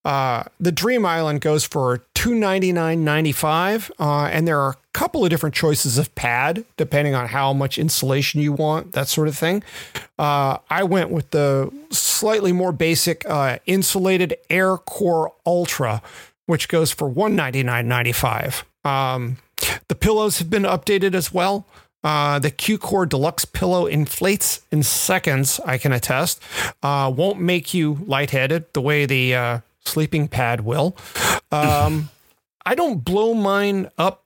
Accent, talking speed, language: American, 165 wpm, English